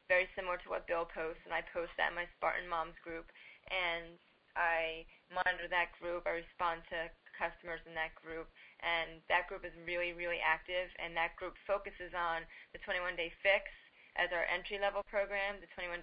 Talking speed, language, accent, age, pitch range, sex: 185 wpm, English, American, 20-39, 170-190 Hz, female